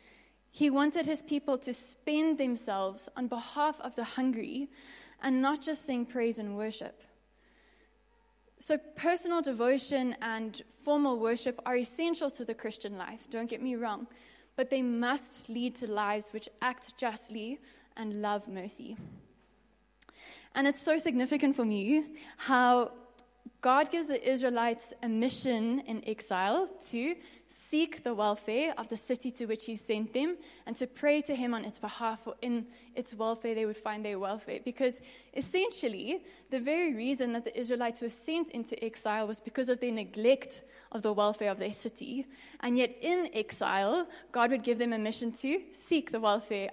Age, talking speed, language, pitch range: 20-39, 165 wpm, English, 225-275 Hz